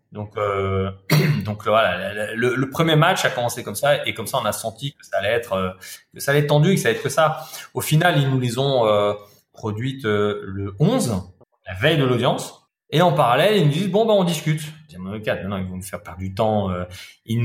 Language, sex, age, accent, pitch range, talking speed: French, male, 20-39, French, 105-145 Hz, 235 wpm